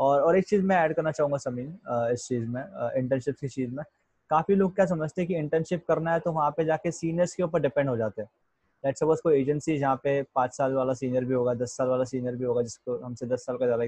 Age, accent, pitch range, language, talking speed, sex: 20-39, native, 130-165 Hz, Hindi, 240 wpm, male